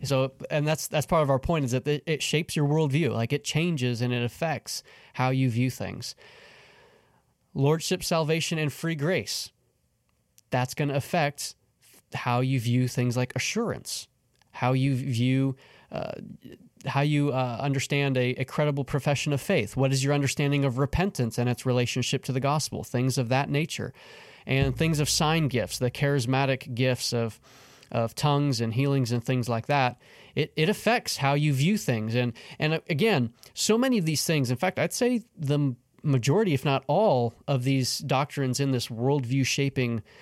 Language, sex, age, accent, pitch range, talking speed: English, male, 20-39, American, 125-150 Hz, 175 wpm